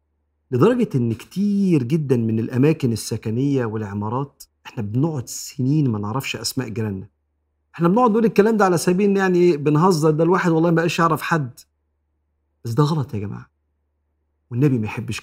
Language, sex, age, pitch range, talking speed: Arabic, male, 50-69, 100-160 Hz, 155 wpm